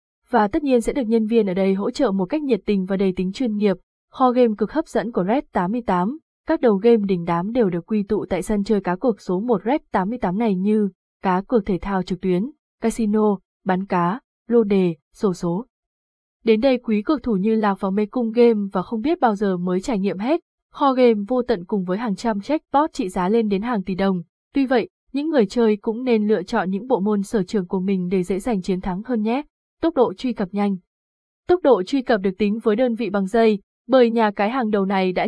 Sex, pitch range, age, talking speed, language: female, 195-240 Hz, 20-39, 245 wpm, Vietnamese